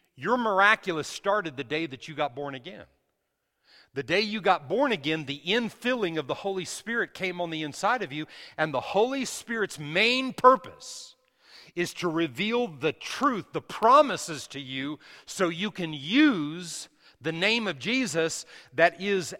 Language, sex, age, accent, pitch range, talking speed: English, male, 40-59, American, 145-200 Hz, 165 wpm